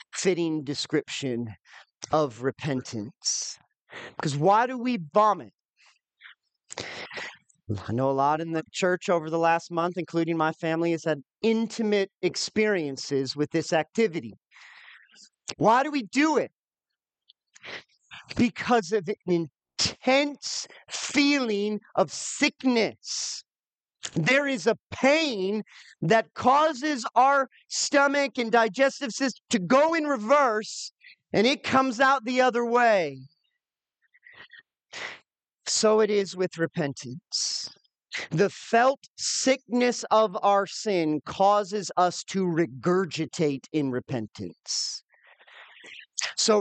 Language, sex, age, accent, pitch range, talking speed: English, male, 40-59, American, 160-250 Hz, 105 wpm